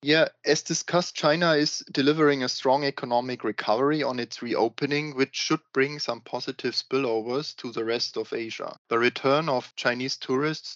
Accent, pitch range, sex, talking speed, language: German, 115-140 Hz, male, 160 wpm, English